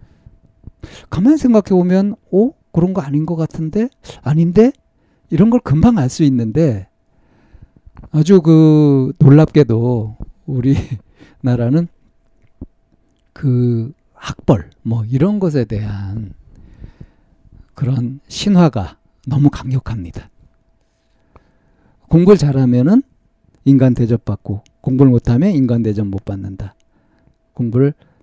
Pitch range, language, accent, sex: 110-160 Hz, Korean, native, male